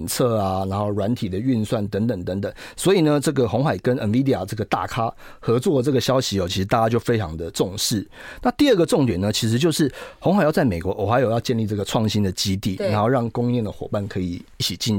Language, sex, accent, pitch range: Chinese, male, native, 100-130 Hz